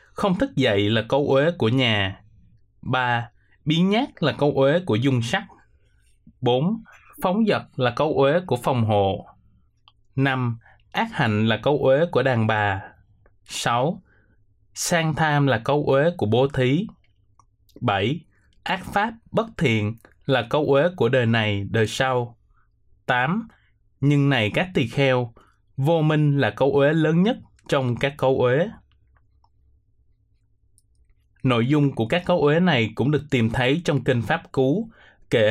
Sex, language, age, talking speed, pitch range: male, Vietnamese, 20-39, 150 wpm, 110-150 Hz